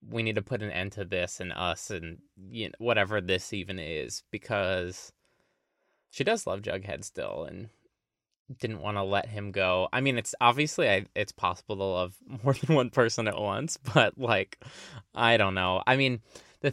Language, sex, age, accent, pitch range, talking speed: English, male, 20-39, American, 95-125 Hz, 190 wpm